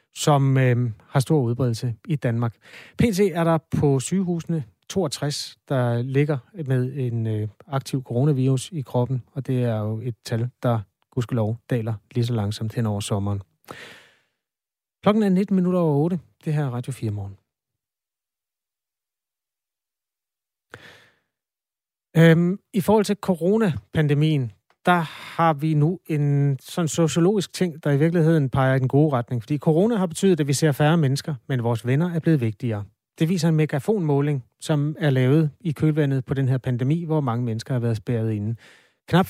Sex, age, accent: male, 30-49, native